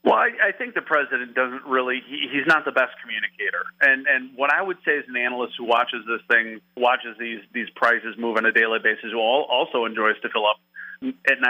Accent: American